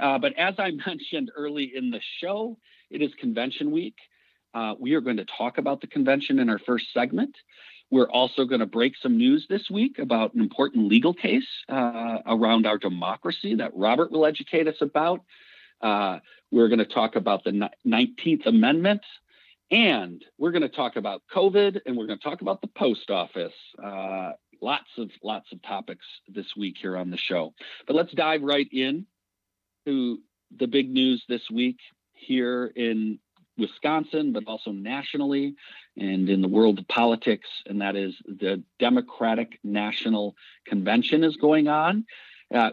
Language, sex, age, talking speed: English, male, 50-69, 170 wpm